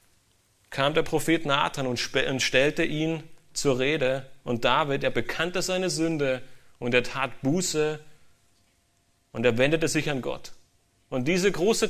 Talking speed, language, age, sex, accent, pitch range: 140 wpm, German, 30-49, male, German, 130-180 Hz